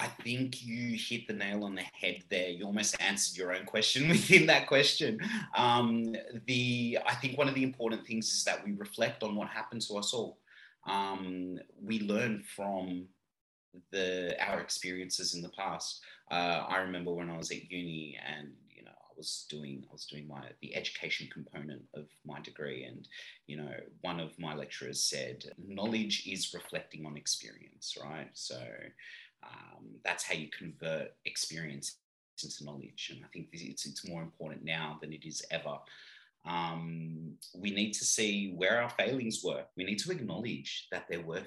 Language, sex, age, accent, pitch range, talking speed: English, male, 30-49, Australian, 85-115 Hz, 180 wpm